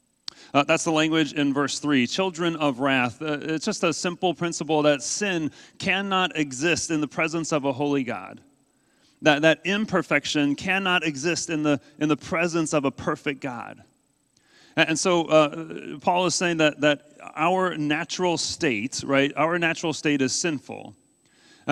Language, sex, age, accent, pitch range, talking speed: English, male, 40-59, American, 145-175 Hz, 165 wpm